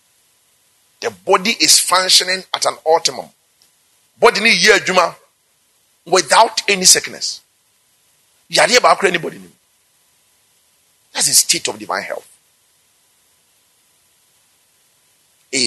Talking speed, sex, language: 90 wpm, male, English